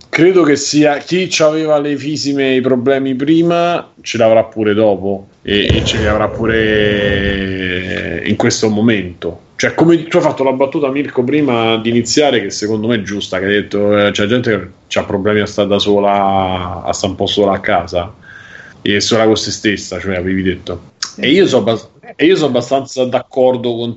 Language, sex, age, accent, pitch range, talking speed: Italian, male, 30-49, native, 105-130 Hz, 190 wpm